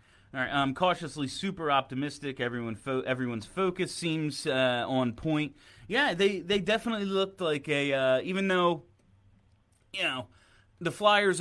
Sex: male